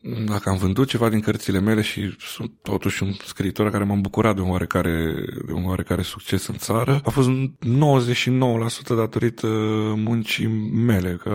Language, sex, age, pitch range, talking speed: Romanian, male, 20-39, 95-115 Hz, 155 wpm